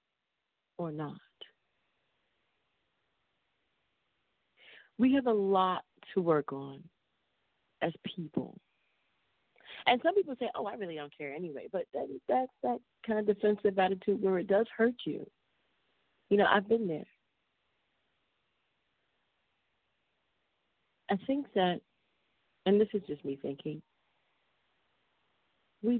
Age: 40-59